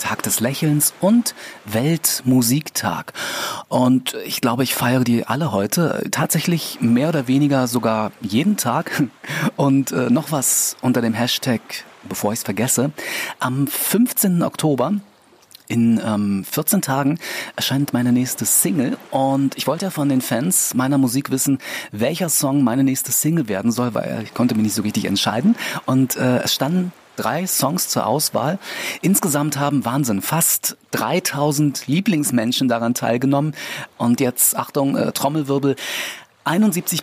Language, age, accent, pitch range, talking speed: German, 30-49, German, 120-150 Hz, 145 wpm